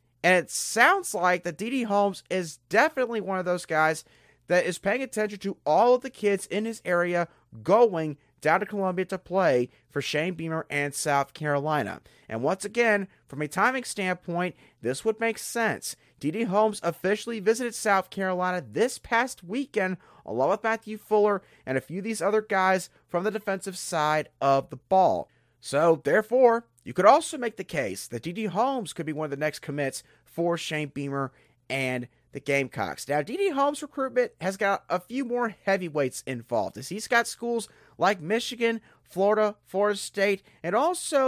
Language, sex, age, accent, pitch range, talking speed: English, male, 30-49, American, 150-215 Hz, 175 wpm